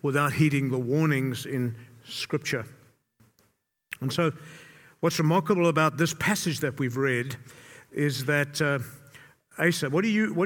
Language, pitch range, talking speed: English, 135-185 Hz, 140 wpm